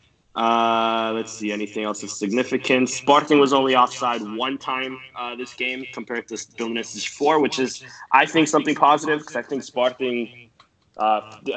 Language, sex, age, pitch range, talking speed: English, male, 20-39, 115-135 Hz, 160 wpm